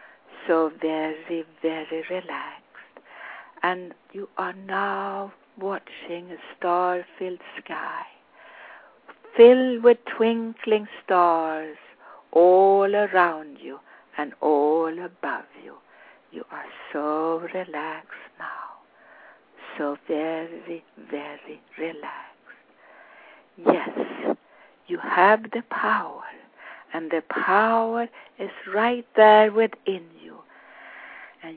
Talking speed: 85 wpm